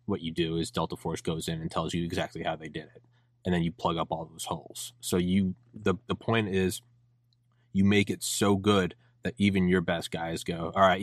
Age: 20-39